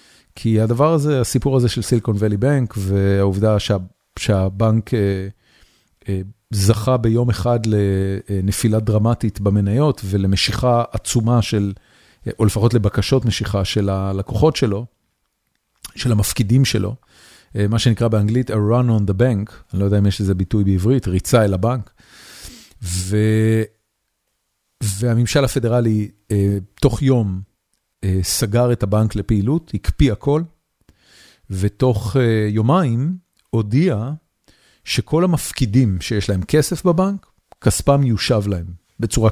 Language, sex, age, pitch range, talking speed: Hebrew, male, 40-59, 100-125 Hz, 120 wpm